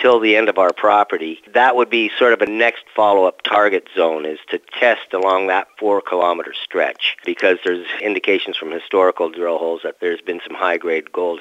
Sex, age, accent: male, 40-59, American